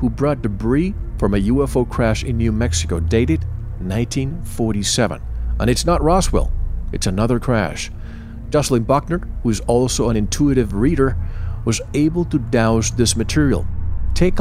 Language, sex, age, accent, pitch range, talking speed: English, male, 50-69, American, 95-135 Hz, 140 wpm